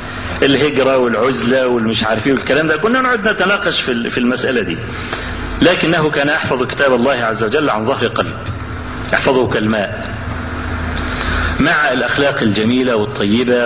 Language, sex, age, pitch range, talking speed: Arabic, male, 40-59, 95-150 Hz, 125 wpm